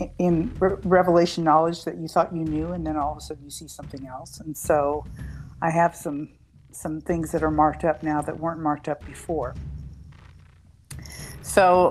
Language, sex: English, female